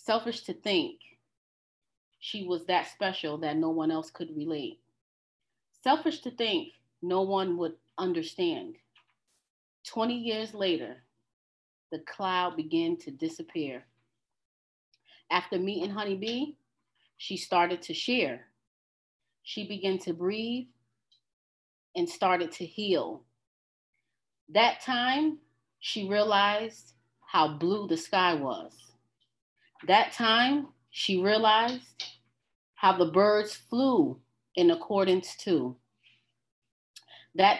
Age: 30-49